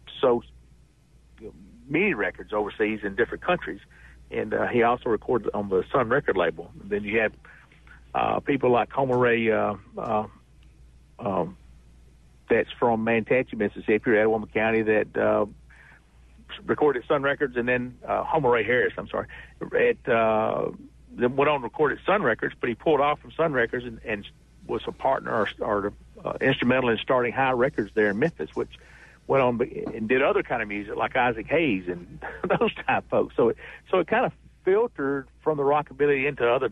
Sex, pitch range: male, 95-130 Hz